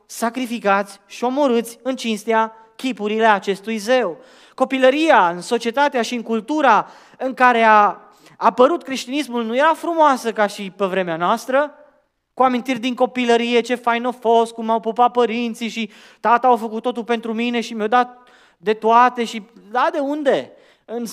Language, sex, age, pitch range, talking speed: Romanian, male, 20-39, 190-265 Hz, 155 wpm